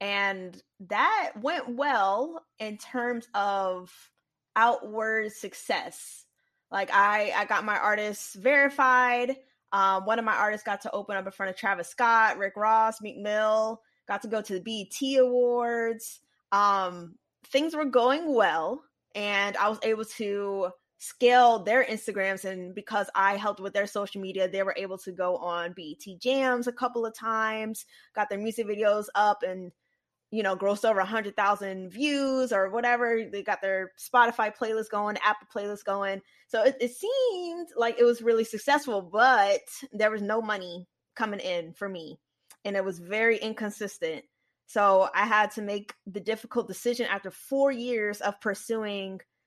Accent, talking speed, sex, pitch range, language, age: American, 160 wpm, female, 195-235 Hz, English, 20-39